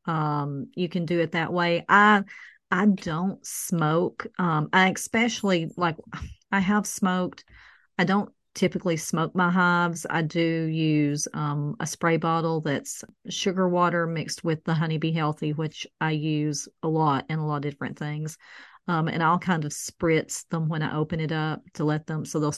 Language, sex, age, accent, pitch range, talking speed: English, female, 40-59, American, 155-180 Hz, 180 wpm